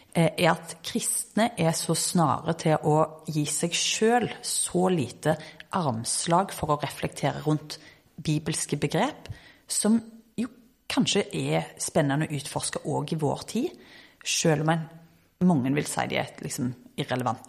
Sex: female